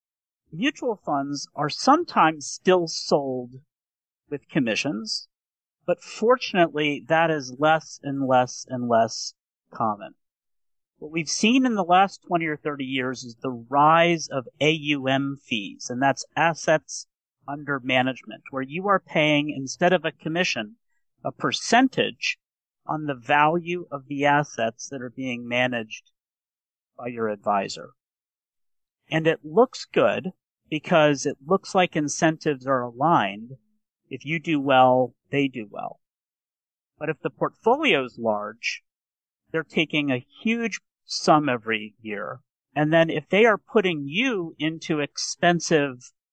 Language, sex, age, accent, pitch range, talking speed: English, male, 40-59, American, 130-165 Hz, 130 wpm